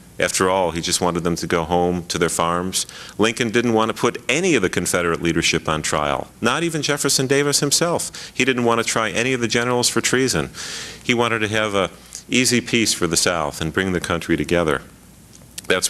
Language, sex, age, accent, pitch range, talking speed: English, male, 40-59, American, 85-110 Hz, 210 wpm